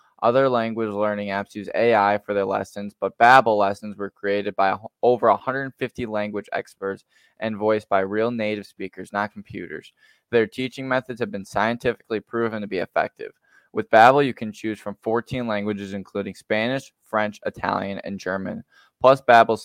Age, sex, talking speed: 10-29, male, 160 wpm